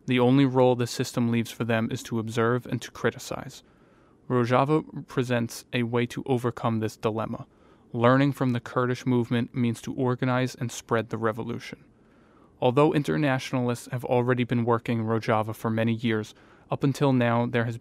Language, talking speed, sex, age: English, 170 wpm, male, 20-39